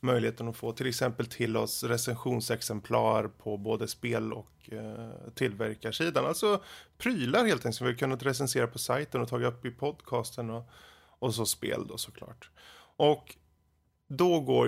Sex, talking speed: male, 160 wpm